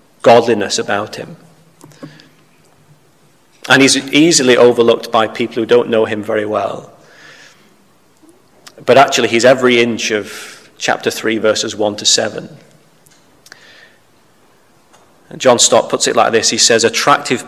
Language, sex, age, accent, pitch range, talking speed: English, male, 30-49, British, 110-130 Hz, 125 wpm